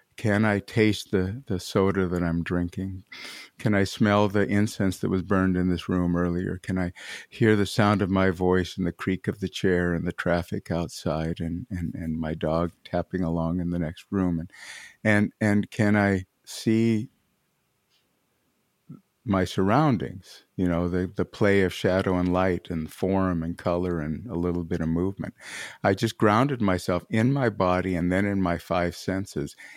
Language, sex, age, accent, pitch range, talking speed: English, male, 50-69, American, 90-110 Hz, 180 wpm